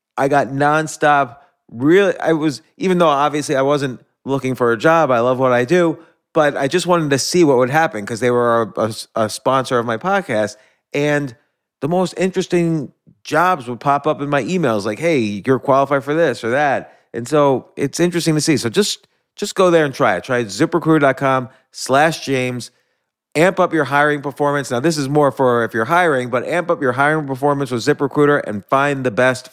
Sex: male